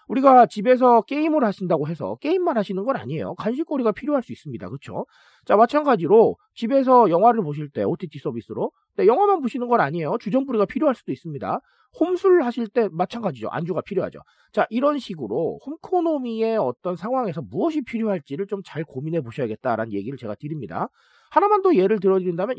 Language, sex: Korean, male